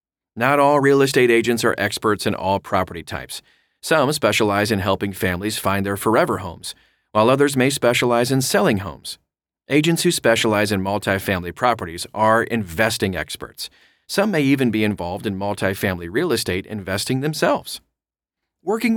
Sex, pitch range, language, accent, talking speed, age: male, 100-130 Hz, English, American, 150 wpm, 40-59